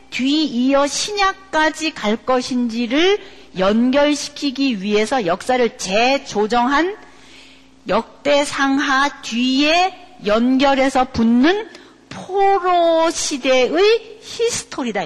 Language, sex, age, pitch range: Korean, female, 40-59, 225-310 Hz